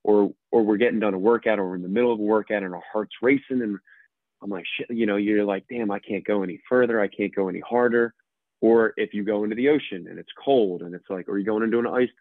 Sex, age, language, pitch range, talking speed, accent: male, 20-39, English, 95-105 Hz, 280 wpm, American